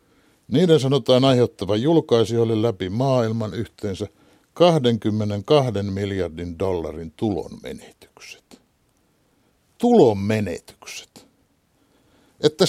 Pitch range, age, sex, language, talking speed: 105-155 Hz, 60-79, male, Finnish, 60 wpm